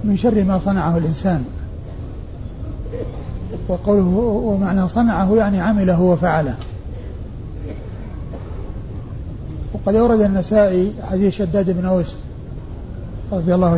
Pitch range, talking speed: 115-190 Hz, 85 wpm